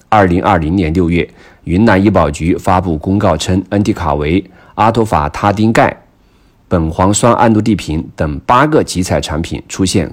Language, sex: Chinese, male